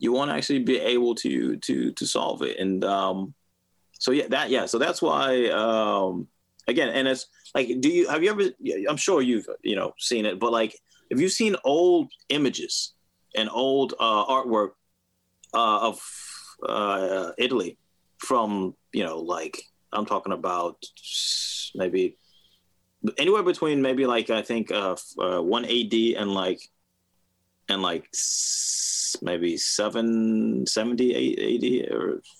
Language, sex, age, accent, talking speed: English, male, 30-49, American, 145 wpm